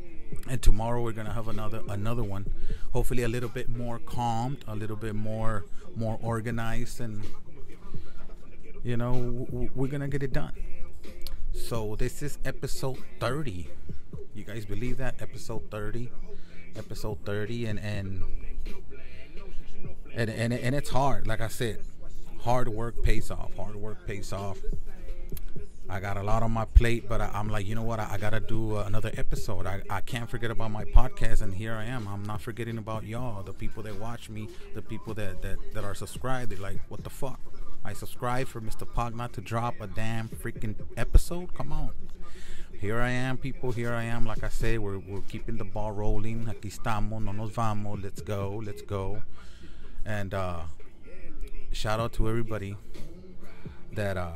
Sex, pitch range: male, 100-120 Hz